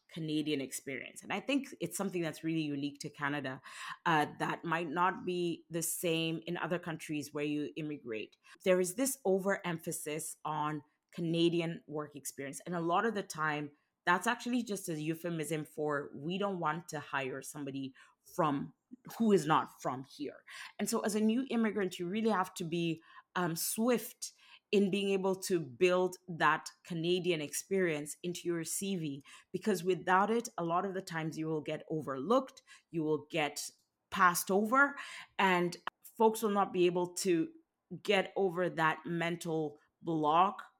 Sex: female